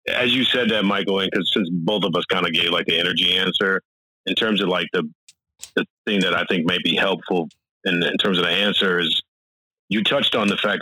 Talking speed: 240 wpm